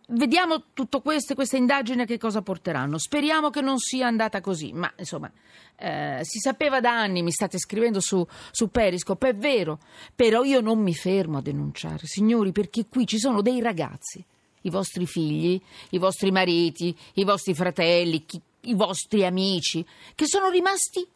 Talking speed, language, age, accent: 165 wpm, Italian, 40-59, native